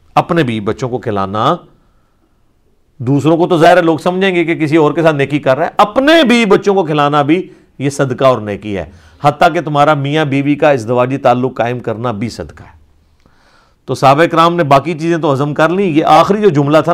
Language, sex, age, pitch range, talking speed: Urdu, male, 50-69, 125-175 Hz, 215 wpm